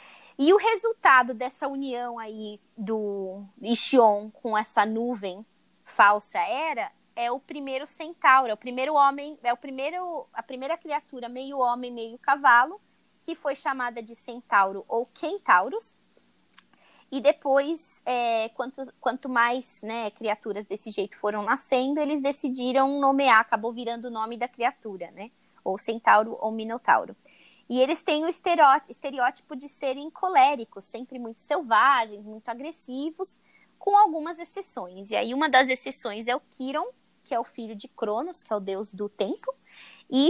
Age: 20-39